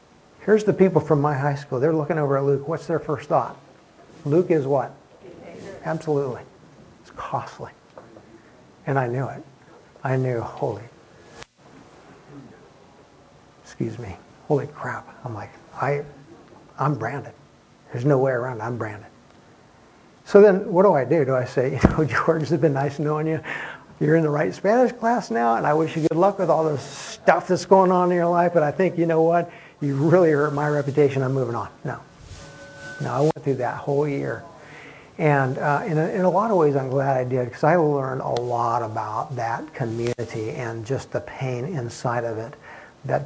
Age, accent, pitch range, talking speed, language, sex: 60-79, American, 125-160 Hz, 185 wpm, English, male